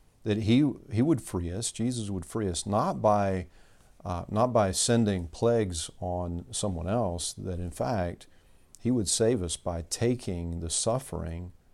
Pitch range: 90-115 Hz